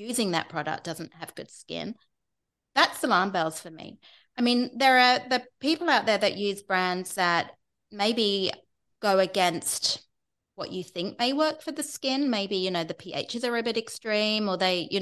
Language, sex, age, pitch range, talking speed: English, female, 30-49, 185-235 Hz, 190 wpm